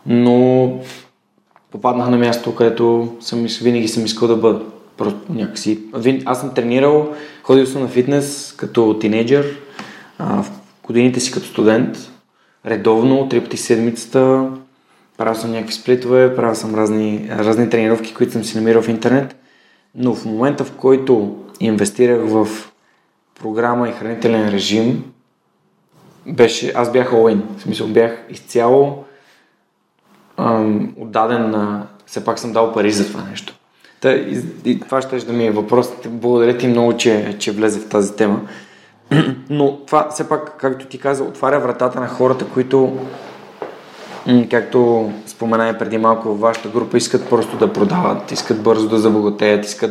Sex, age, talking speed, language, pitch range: male, 20-39, 150 wpm, Bulgarian, 110-130 Hz